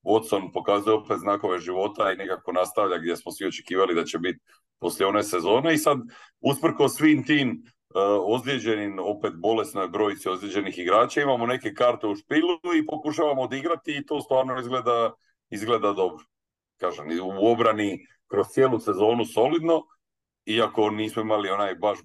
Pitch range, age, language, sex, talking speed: 95-125 Hz, 40-59, Croatian, male, 150 wpm